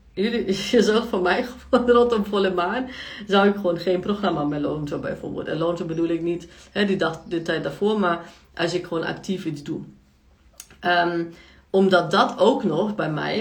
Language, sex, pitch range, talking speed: Dutch, female, 165-185 Hz, 180 wpm